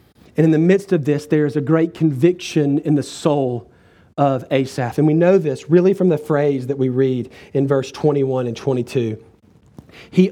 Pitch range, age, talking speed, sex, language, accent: 150-195 Hz, 40-59, 190 wpm, male, English, American